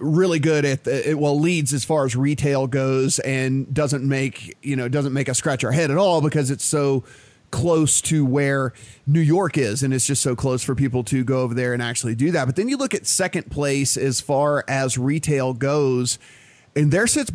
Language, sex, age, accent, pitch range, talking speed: English, male, 30-49, American, 135-160 Hz, 220 wpm